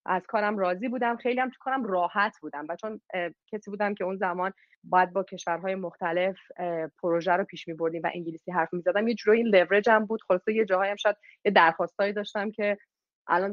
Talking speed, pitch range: 190 wpm, 175-220 Hz